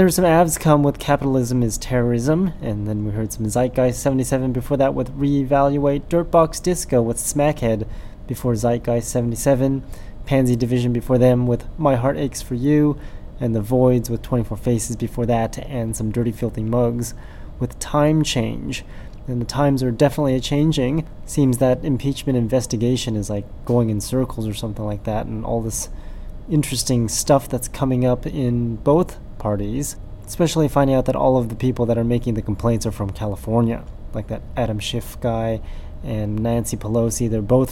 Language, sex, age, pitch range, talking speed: English, male, 20-39, 110-130 Hz, 170 wpm